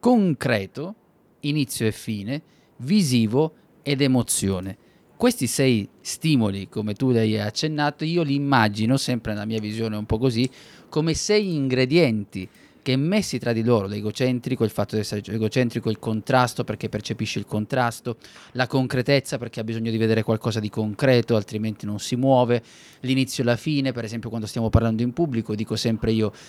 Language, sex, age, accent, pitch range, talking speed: Italian, male, 30-49, native, 110-145 Hz, 170 wpm